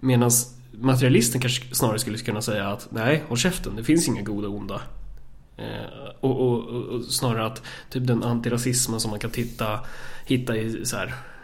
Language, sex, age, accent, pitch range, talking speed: Swedish, male, 20-39, native, 110-130 Hz, 185 wpm